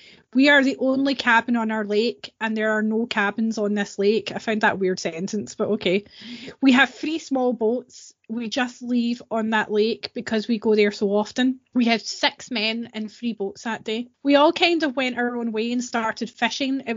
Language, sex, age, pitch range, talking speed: English, female, 20-39, 210-250 Hz, 215 wpm